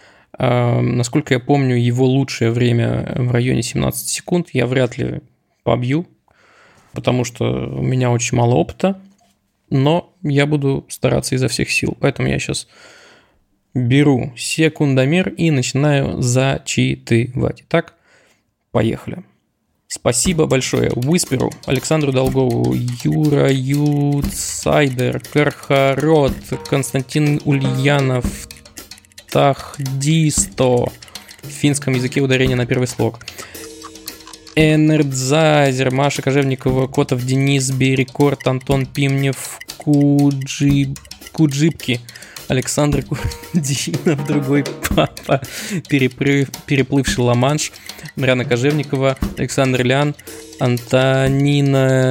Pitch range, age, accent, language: 125-145 Hz, 20-39, native, Russian